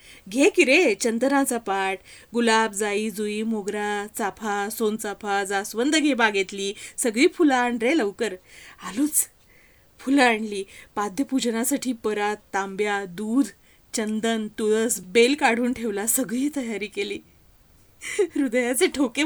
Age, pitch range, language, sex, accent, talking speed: 30-49, 210-290 Hz, Marathi, female, native, 115 wpm